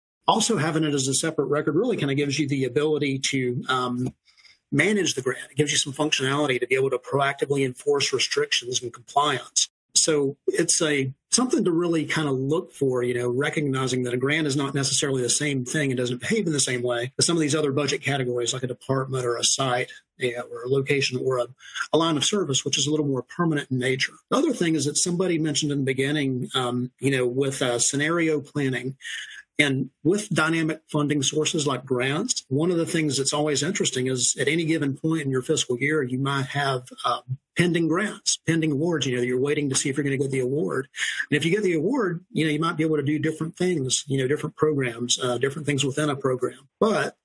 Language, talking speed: English, 230 wpm